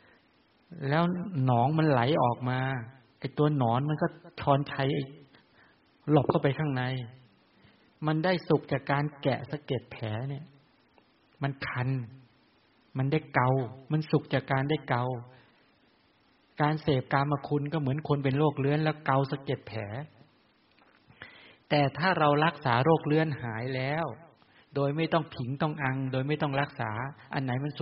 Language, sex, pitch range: English, male, 130-150 Hz